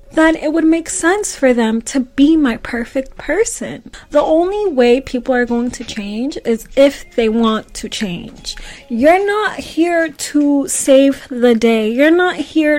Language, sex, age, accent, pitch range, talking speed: English, female, 20-39, American, 235-295 Hz, 170 wpm